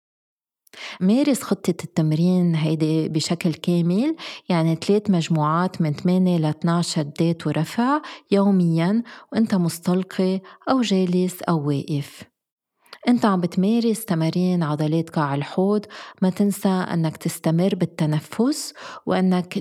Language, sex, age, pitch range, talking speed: Arabic, female, 30-49, 160-200 Hz, 105 wpm